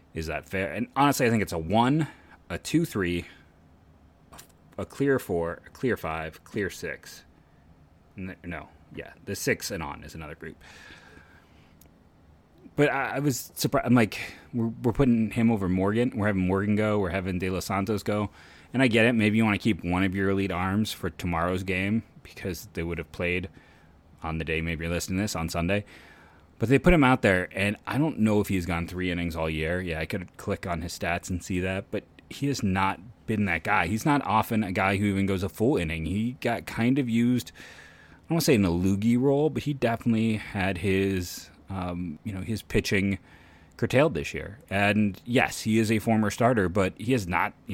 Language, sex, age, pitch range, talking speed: English, male, 30-49, 85-110 Hz, 215 wpm